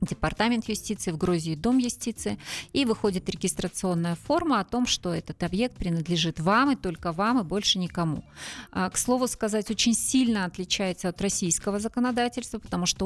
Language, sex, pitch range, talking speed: Russian, female, 170-220 Hz, 155 wpm